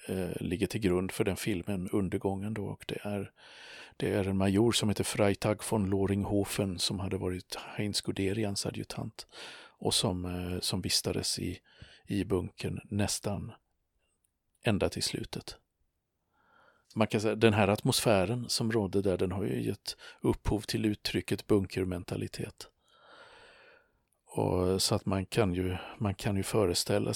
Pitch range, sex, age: 95-110 Hz, male, 50-69